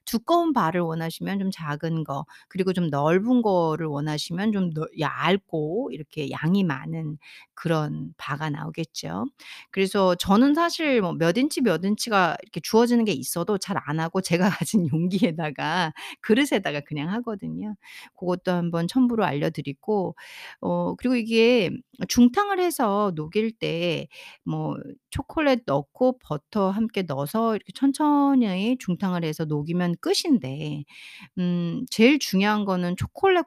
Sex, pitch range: female, 165-245 Hz